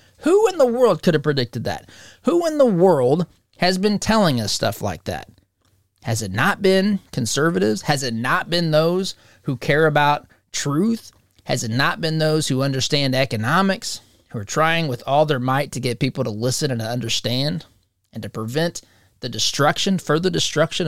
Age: 30-49